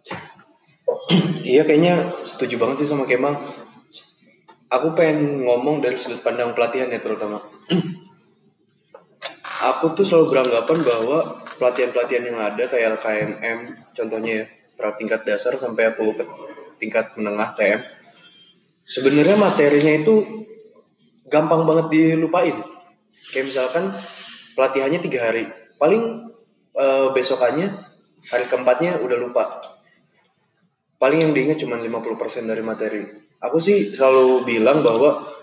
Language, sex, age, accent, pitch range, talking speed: Indonesian, male, 20-39, native, 120-180 Hz, 110 wpm